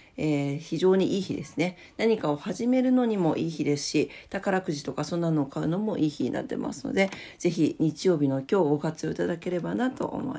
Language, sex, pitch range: Japanese, female, 160-225 Hz